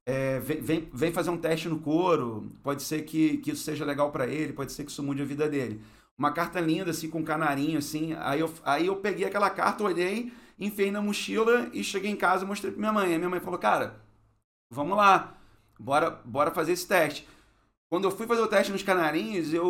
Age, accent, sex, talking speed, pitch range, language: 40-59, Brazilian, male, 220 wpm, 145-175 Hz, Portuguese